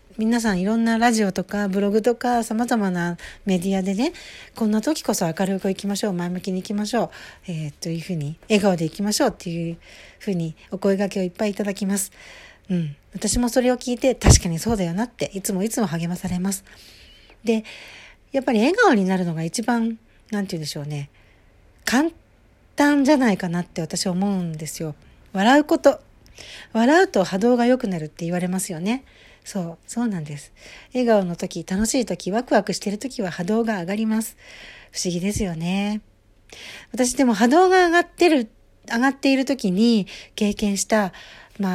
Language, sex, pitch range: Japanese, female, 180-230 Hz